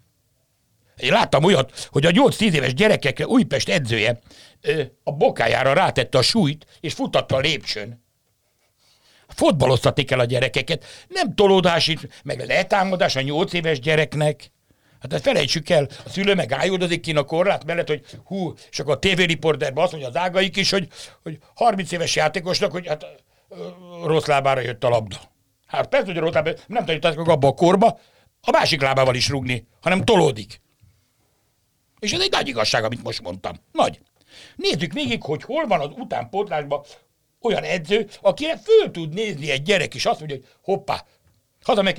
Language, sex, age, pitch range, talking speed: Hungarian, male, 60-79, 125-185 Hz, 165 wpm